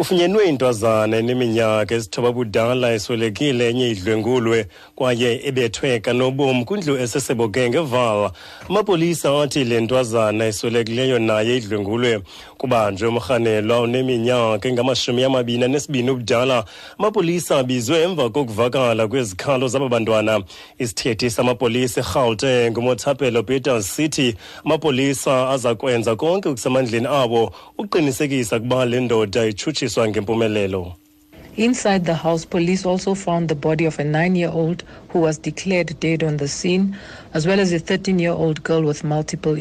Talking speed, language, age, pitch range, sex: 125 wpm, English, 30-49, 120-160 Hz, male